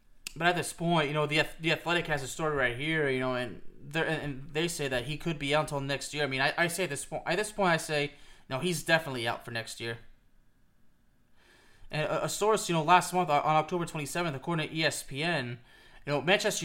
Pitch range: 130-170 Hz